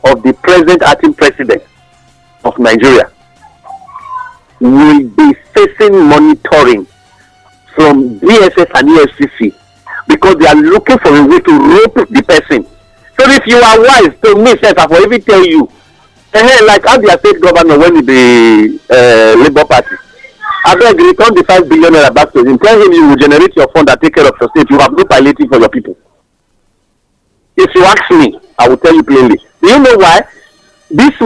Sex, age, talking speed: male, 50-69, 180 wpm